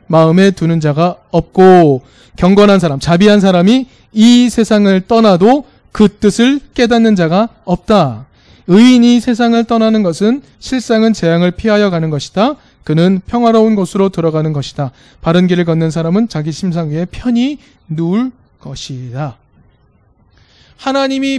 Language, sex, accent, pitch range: Korean, male, native, 165-245 Hz